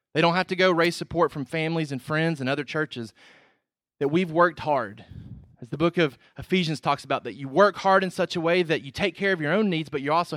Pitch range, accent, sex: 130-165 Hz, American, male